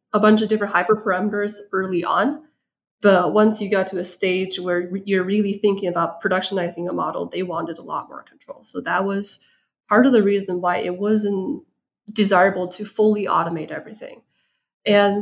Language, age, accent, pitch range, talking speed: English, 20-39, American, 180-215 Hz, 180 wpm